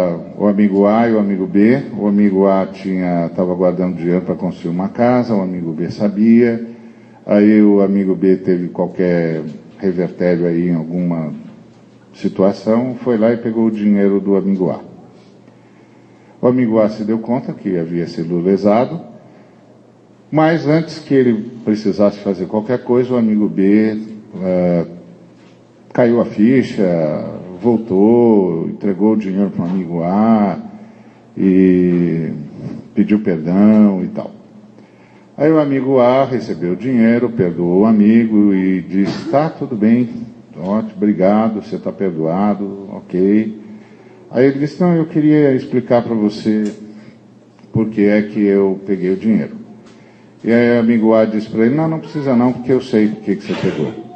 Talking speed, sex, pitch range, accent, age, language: 150 wpm, male, 95-120 Hz, Brazilian, 50-69, Portuguese